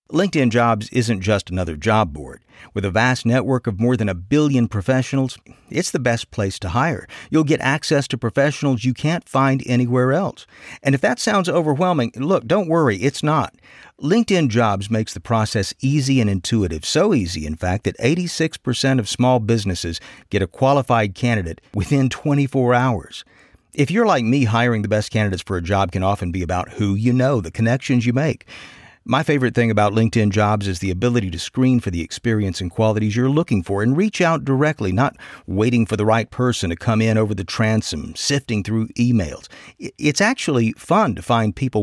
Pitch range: 105-135 Hz